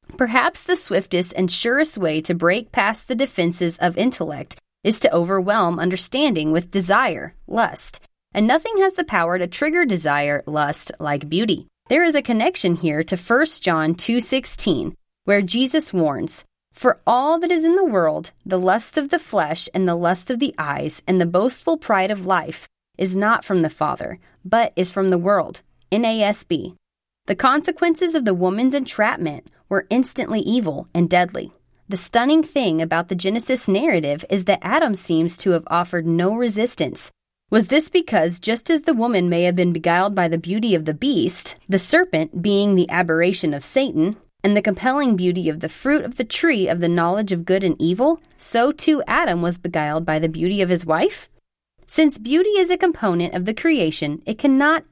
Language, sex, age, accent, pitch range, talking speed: English, female, 30-49, American, 175-260 Hz, 180 wpm